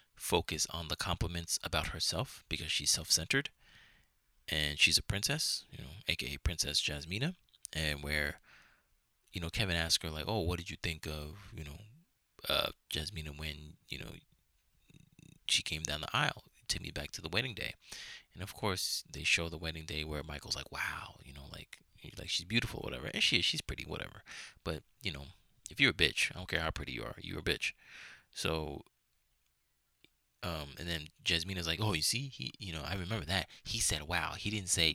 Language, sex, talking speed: English, male, 195 wpm